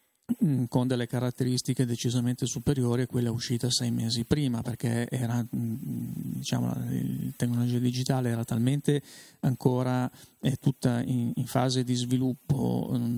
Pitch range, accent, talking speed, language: 120-135 Hz, native, 120 wpm, Italian